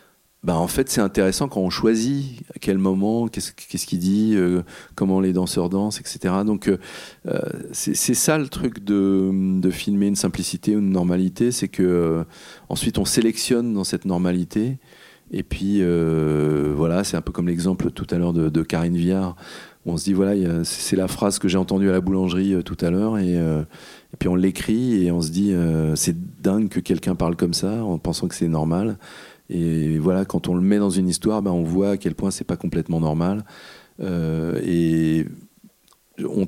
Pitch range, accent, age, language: 85-100 Hz, French, 40-59, French